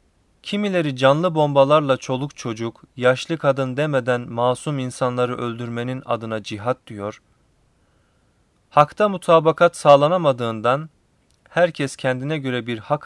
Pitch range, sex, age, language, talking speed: 120-150 Hz, male, 30-49, Turkish, 100 wpm